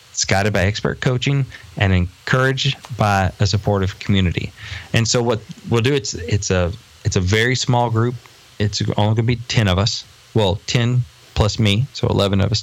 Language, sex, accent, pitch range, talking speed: English, male, American, 100-125 Hz, 185 wpm